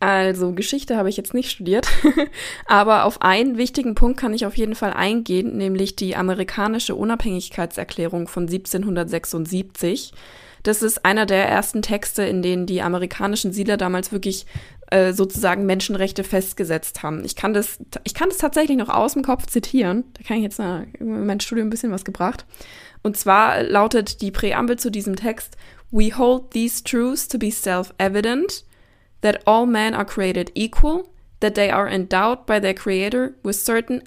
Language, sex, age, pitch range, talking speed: German, female, 20-39, 185-225 Hz, 165 wpm